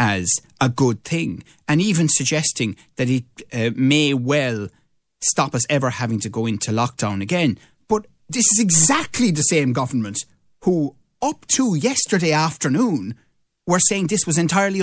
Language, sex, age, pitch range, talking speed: English, male, 30-49, 115-150 Hz, 155 wpm